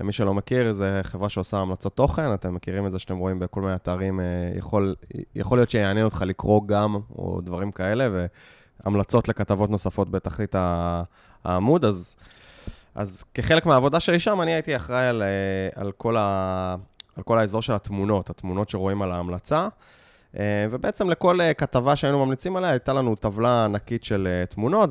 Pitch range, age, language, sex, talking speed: 100-145 Hz, 20-39, Hebrew, male, 160 wpm